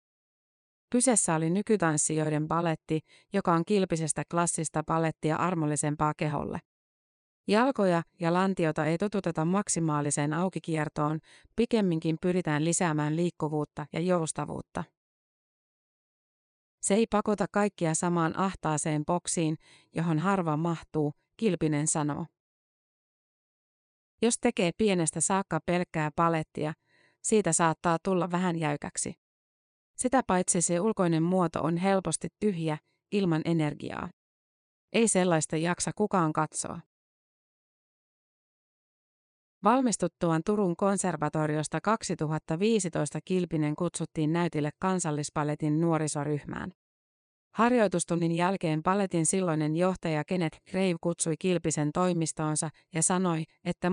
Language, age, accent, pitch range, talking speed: Finnish, 30-49, native, 155-185 Hz, 95 wpm